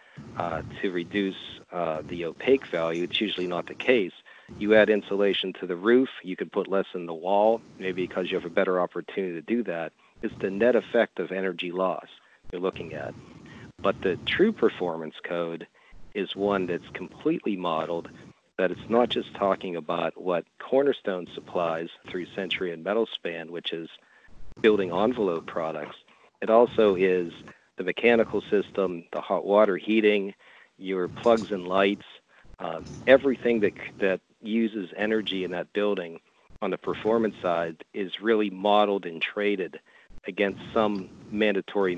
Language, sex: English, male